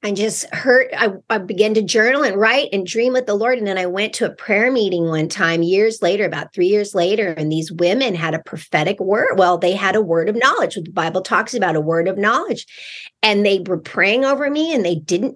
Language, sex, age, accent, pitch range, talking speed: English, female, 40-59, American, 185-255 Hz, 240 wpm